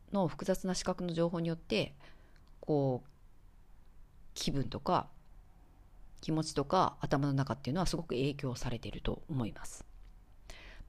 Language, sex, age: Japanese, female, 40-59